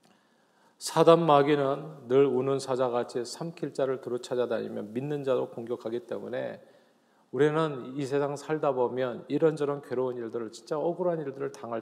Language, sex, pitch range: Korean, male, 135-180 Hz